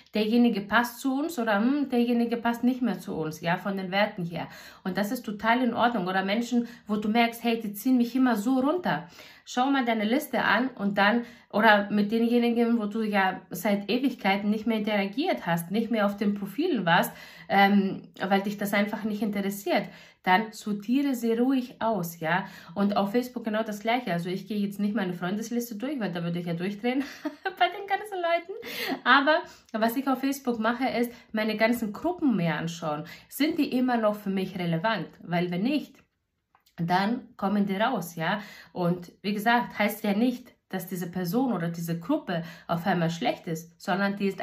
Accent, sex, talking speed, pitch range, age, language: German, female, 190 wpm, 195-240 Hz, 50-69, German